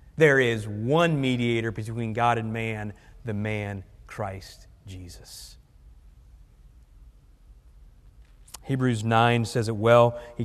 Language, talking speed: English, 105 wpm